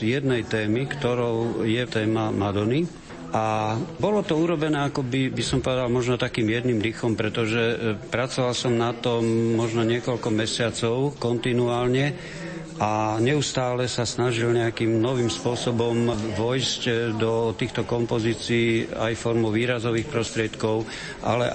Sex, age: male, 50-69